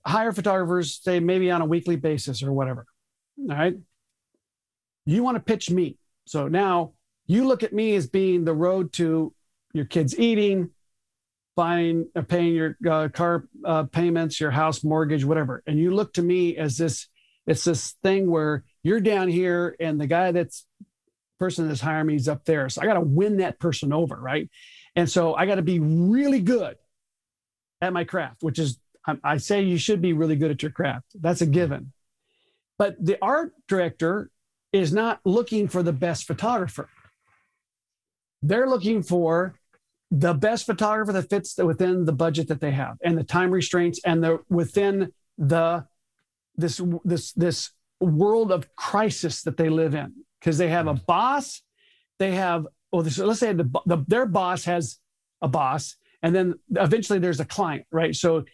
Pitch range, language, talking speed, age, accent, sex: 160-195 Hz, English, 175 wpm, 50-69, American, male